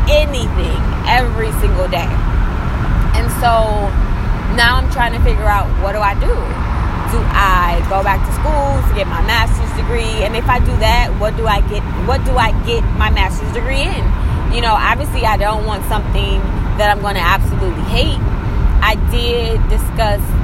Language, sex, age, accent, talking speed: English, female, 20-39, American, 175 wpm